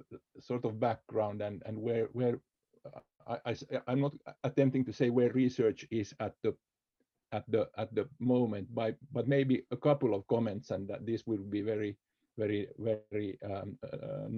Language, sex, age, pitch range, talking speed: English, male, 50-69, 110-125 Hz, 170 wpm